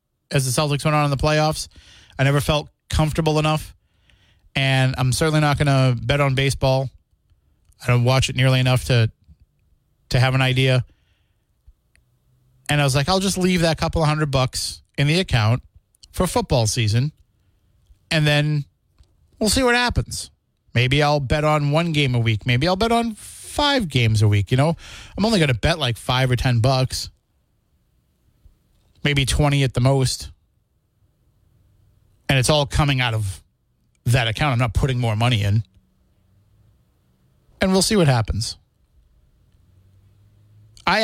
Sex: male